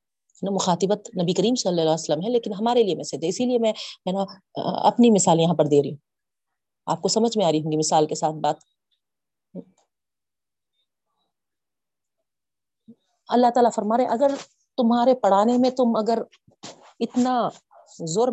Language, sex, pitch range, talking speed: Urdu, female, 195-255 Hz, 160 wpm